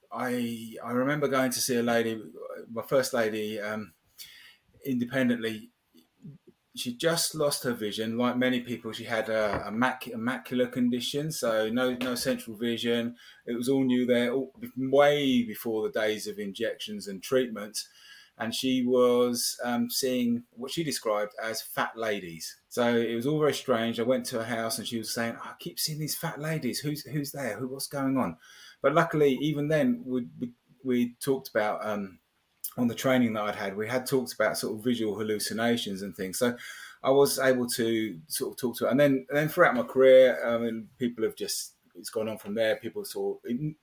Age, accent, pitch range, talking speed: 20-39, British, 115-140 Hz, 195 wpm